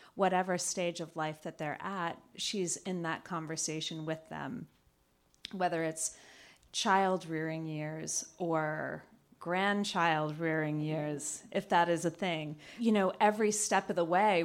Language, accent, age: English, American, 30-49